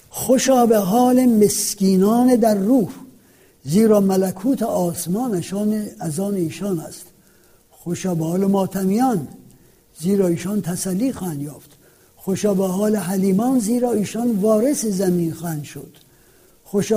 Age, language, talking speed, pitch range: 60-79, Persian, 105 wpm, 165-215 Hz